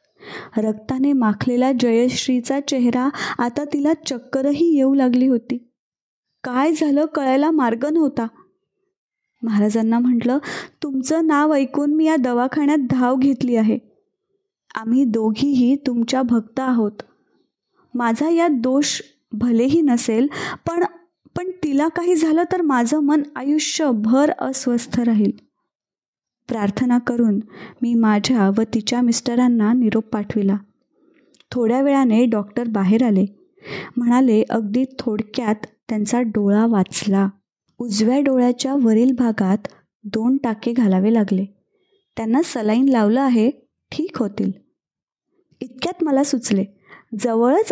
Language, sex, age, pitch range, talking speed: Marathi, female, 20-39, 225-285 Hz, 105 wpm